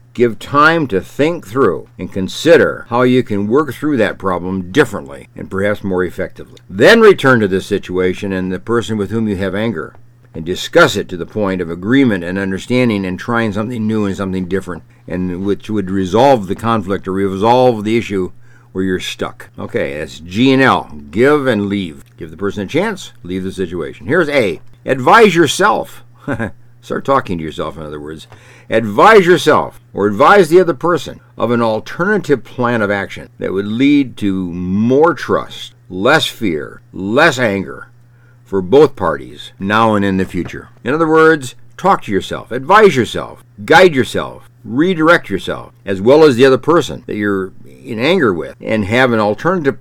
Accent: American